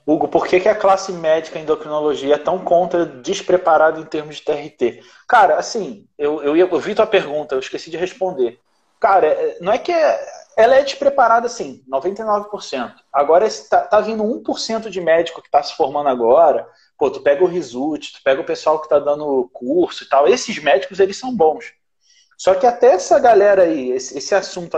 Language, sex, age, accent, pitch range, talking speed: Portuguese, male, 30-49, Brazilian, 155-250 Hz, 190 wpm